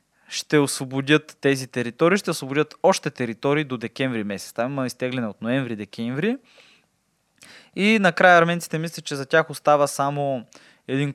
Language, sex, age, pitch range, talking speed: Bulgarian, male, 20-39, 115-150 Hz, 135 wpm